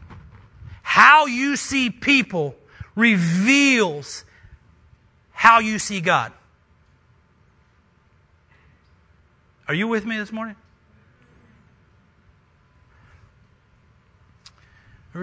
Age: 40-59